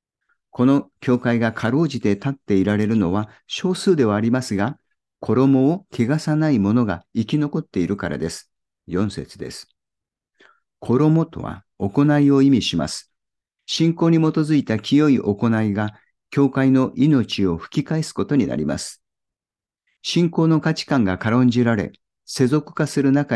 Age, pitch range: 50-69, 105-145 Hz